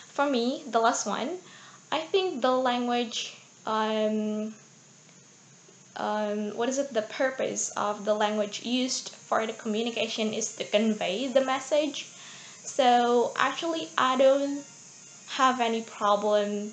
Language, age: Indonesian, 10-29